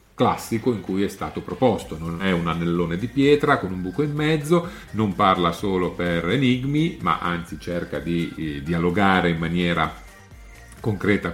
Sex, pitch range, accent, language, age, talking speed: male, 85-125 Hz, native, Italian, 40-59, 165 wpm